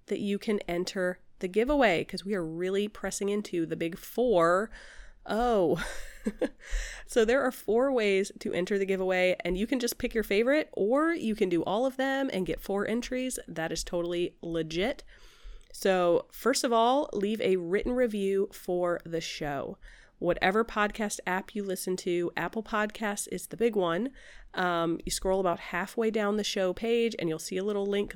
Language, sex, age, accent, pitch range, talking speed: English, female, 30-49, American, 175-225 Hz, 180 wpm